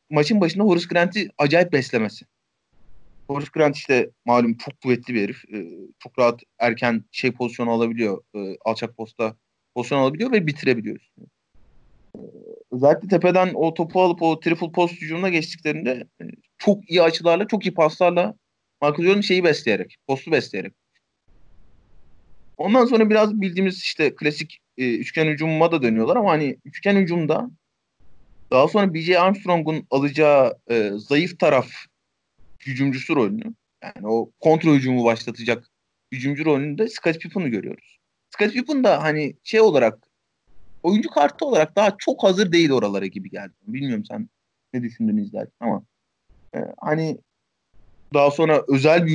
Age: 30-49